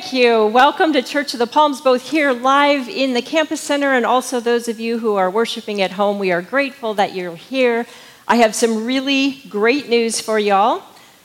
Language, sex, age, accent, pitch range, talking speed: English, female, 40-59, American, 205-255 Hz, 210 wpm